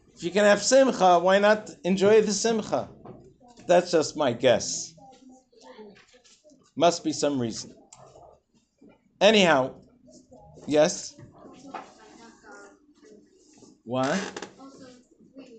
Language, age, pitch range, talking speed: English, 50-69, 140-210 Hz, 80 wpm